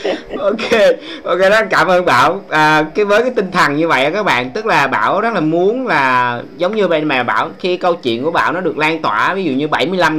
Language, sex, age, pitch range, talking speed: Vietnamese, male, 20-39, 125-175 Hz, 240 wpm